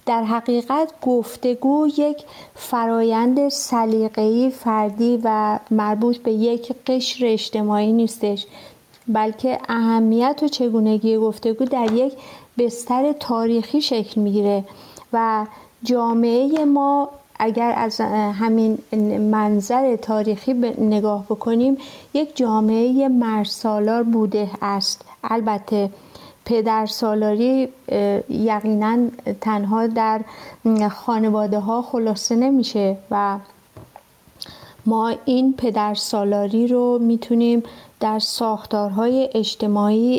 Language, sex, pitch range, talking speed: English, female, 215-245 Hz, 90 wpm